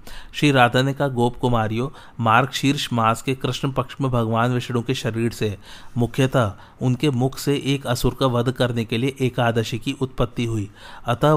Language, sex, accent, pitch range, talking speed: Hindi, male, native, 115-135 Hz, 175 wpm